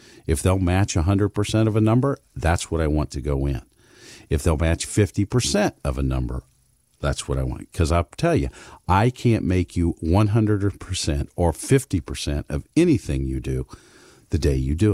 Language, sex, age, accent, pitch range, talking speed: English, male, 50-69, American, 75-100 Hz, 175 wpm